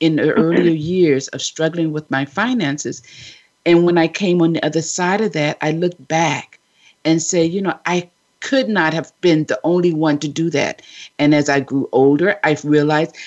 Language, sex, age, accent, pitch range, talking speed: English, female, 50-69, American, 145-175 Hz, 200 wpm